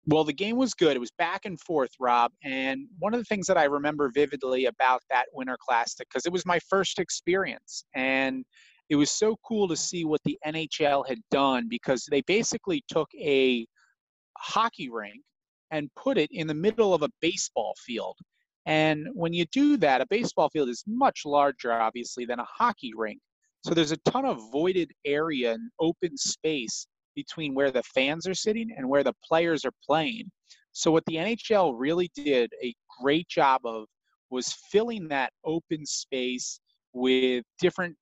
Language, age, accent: English, 30-49, American